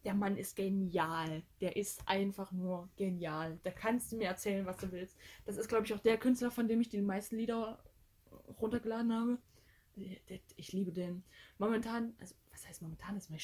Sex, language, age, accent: female, German, 10-29, German